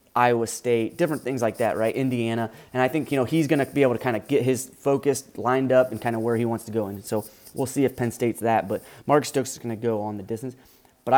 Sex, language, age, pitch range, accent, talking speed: male, English, 30-49, 110-130 Hz, American, 285 wpm